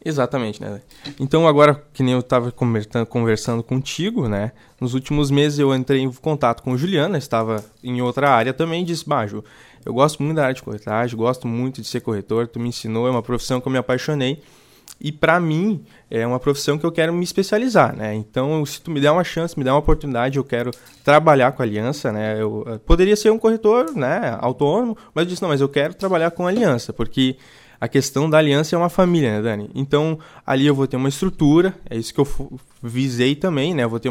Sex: male